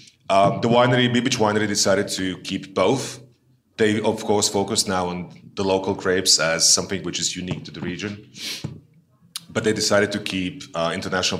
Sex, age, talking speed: male, 30-49, 175 wpm